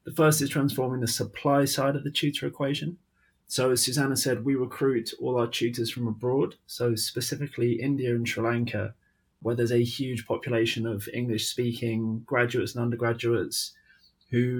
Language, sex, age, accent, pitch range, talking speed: English, male, 20-39, British, 115-130 Hz, 160 wpm